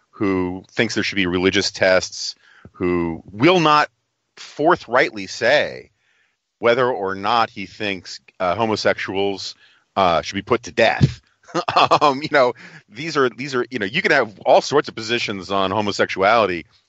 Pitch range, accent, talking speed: 95-120 Hz, American, 155 wpm